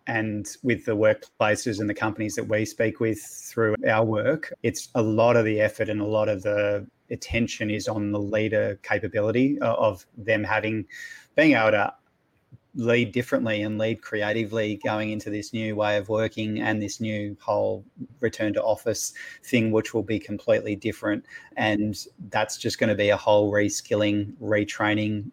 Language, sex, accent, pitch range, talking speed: English, male, Australian, 105-115 Hz, 170 wpm